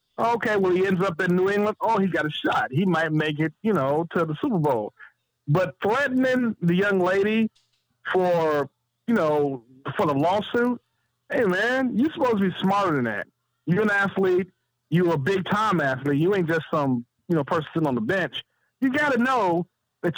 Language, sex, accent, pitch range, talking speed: English, male, American, 145-215 Hz, 195 wpm